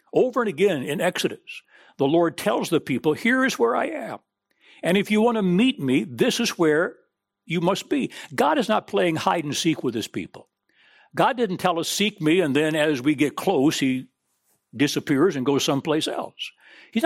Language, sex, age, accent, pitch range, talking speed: English, male, 60-79, American, 145-205 Hz, 200 wpm